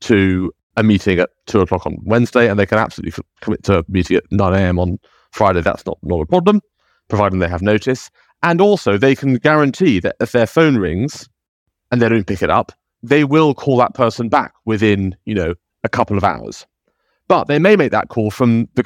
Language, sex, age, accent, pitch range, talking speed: English, male, 30-49, British, 90-120 Hz, 215 wpm